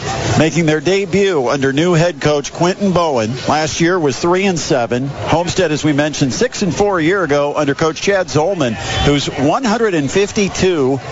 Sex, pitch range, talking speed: male, 150-215 Hz, 165 wpm